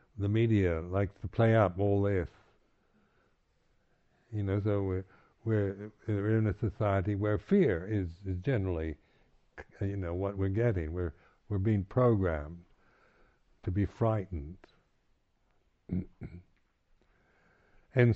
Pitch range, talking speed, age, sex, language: 95-115 Hz, 110 wpm, 60-79, male, English